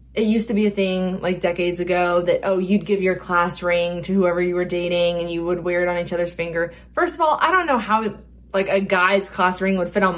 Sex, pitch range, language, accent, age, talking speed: female, 175-210 Hz, English, American, 20-39, 265 wpm